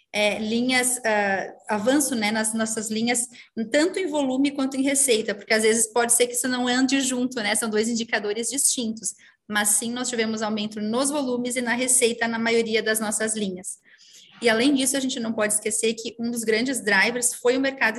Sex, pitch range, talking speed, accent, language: female, 215-250 Hz, 200 wpm, Brazilian, Portuguese